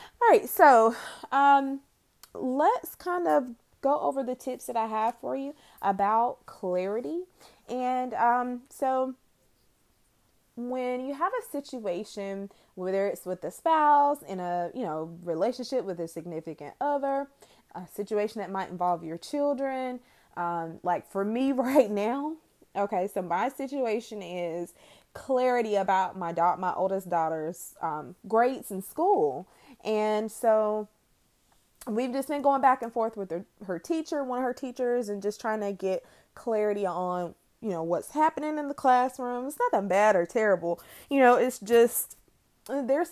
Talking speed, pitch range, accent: 155 wpm, 185-265 Hz, American